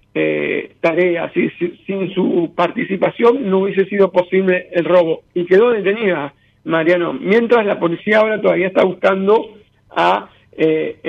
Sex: male